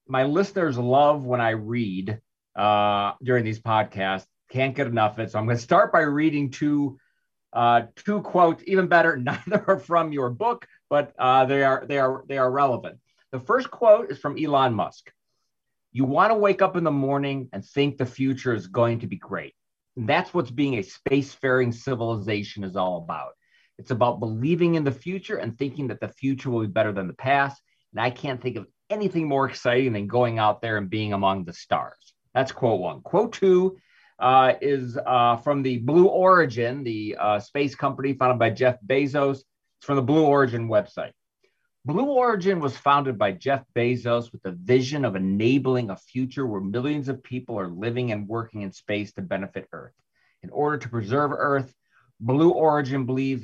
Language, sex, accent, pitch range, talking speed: English, male, American, 115-145 Hz, 190 wpm